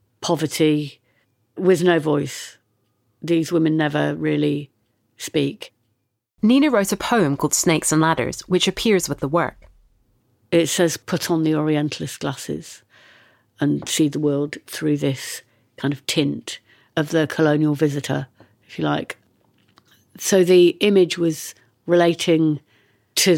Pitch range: 140-175 Hz